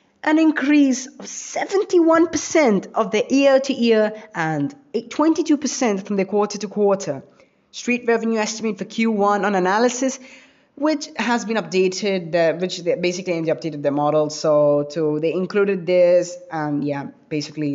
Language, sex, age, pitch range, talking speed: English, female, 20-39, 155-200 Hz, 130 wpm